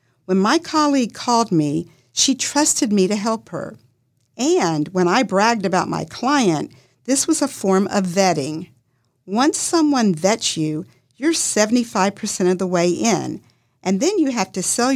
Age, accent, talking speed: 50-69, American, 160 wpm